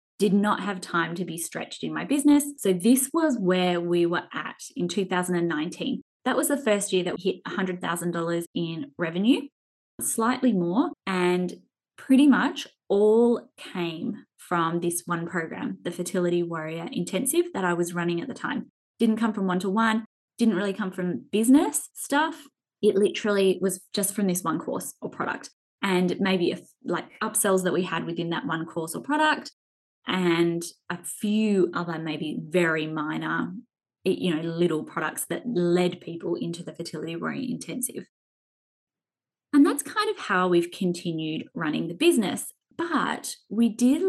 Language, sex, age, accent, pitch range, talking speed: English, female, 20-39, Australian, 170-225 Hz, 160 wpm